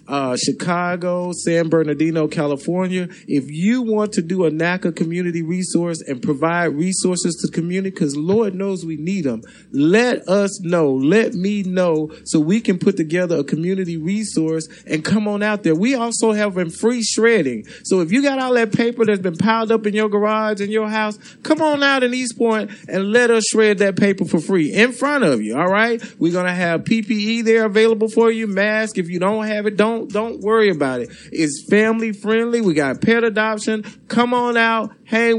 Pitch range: 170-220 Hz